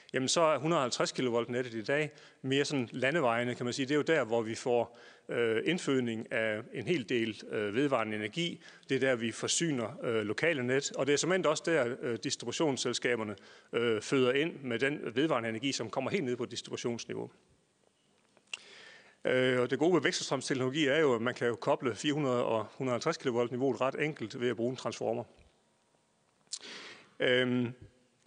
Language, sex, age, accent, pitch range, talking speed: Danish, male, 40-59, native, 115-140 Hz, 180 wpm